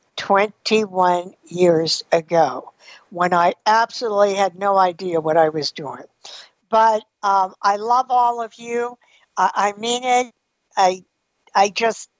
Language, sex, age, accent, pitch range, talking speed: English, female, 60-79, American, 180-240 Hz, 125 wpm